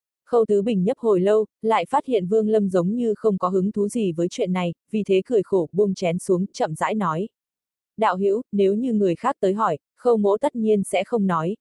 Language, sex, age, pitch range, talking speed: Vietnamese, female, 20-39, 185-225 Hz, 240 wpm